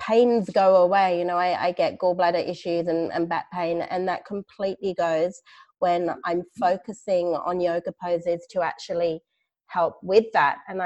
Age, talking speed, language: 30-49, 165 wpm, English